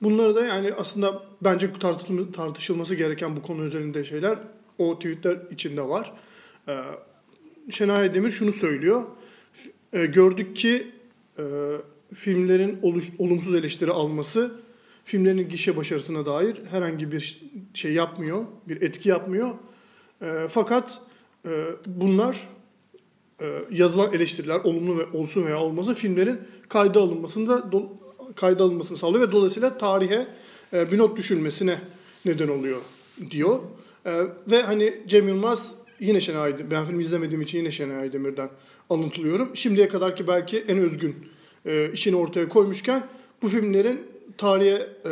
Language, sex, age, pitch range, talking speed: Turkish, male, 40-59, 170-215 Hz, 115 wpm